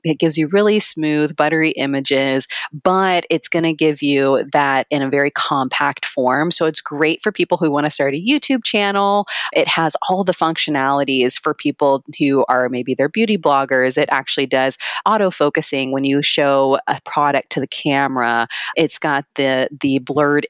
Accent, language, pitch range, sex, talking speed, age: American, English, 125-155 Hz, female, 180 wpm, 20-39